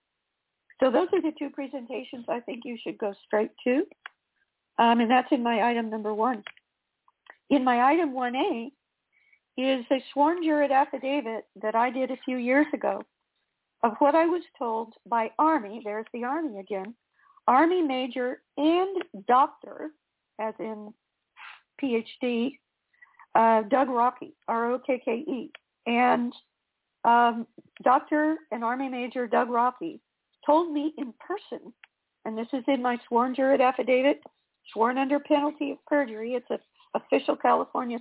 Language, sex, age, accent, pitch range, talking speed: English, female, 50-69, American, 230-285 Hz, 135 wpm